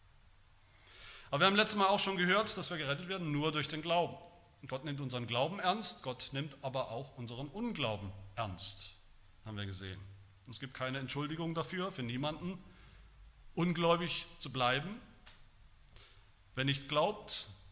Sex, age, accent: male, 40-59, German